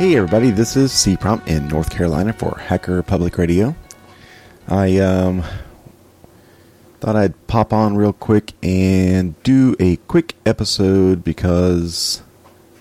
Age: 40-59